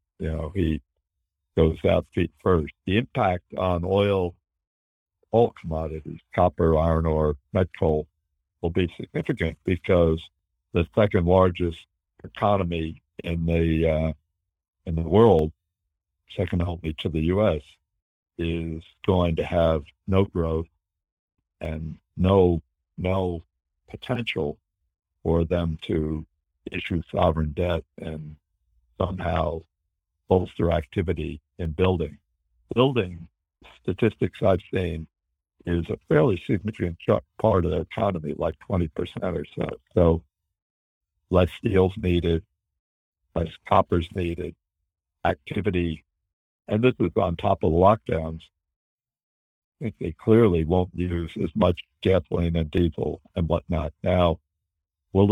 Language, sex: English, male